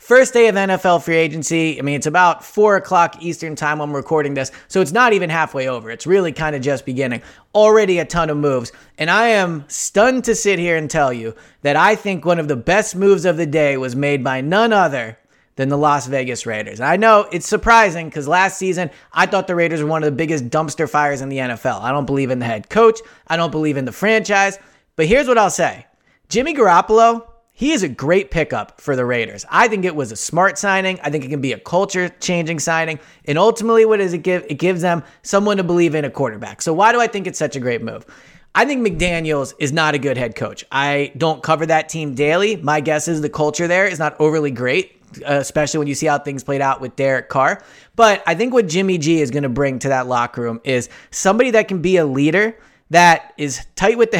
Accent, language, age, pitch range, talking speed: American, English, 30-49, 140-190 Hz, 240 wpm